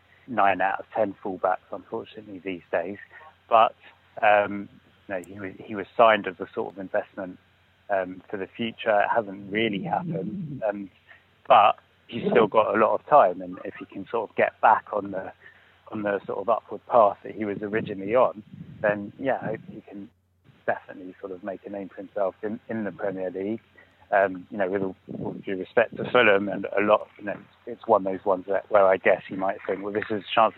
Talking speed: 215 wpm